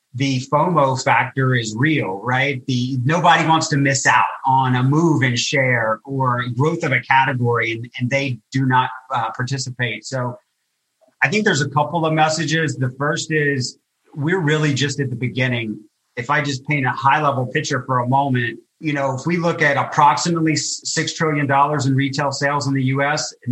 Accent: American